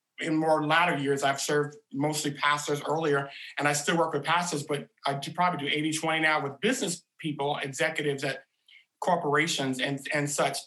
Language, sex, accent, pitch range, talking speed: English, male, American, 140-170 Hz, 180 wpm